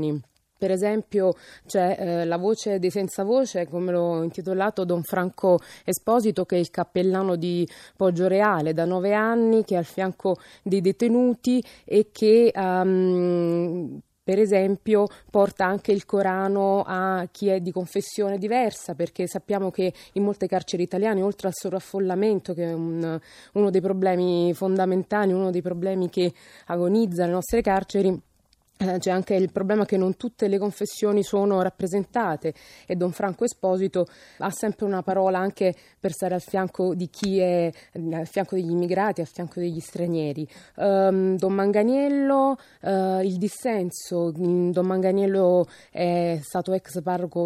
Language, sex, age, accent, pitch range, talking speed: Italian, female, 20-39, native, 180-200 Hz, 145 wpm